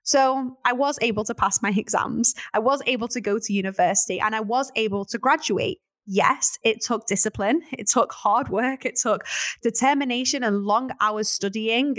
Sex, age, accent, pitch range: female, 10-29, British, 205-270 Hz